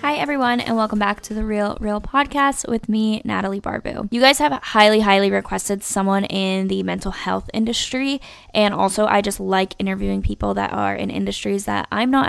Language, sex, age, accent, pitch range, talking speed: English, female, 10-29, American, 195-245 Hz, 195 wpm